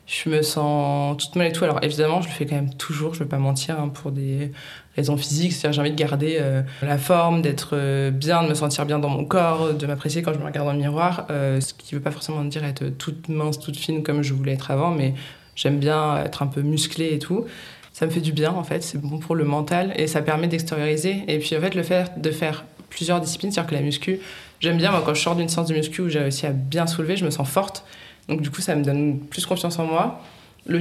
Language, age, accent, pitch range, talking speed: French, 20-39, French, 145-170 Hz, 270 wpm